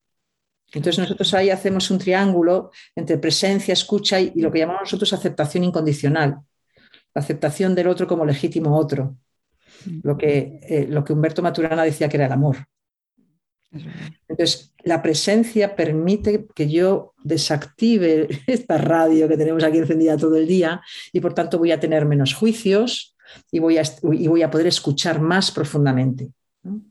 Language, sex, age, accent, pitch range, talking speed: Spanish, female, 50-69, Spanish, 145-180 Hz, 145 wpm